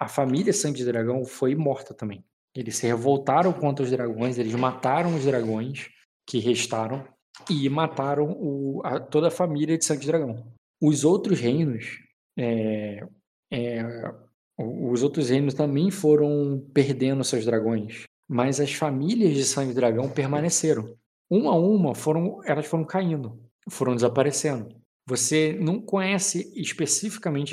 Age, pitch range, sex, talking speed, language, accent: 20-39, 125-160 Hz, male, 140 wpm, Portuguese, Brazilian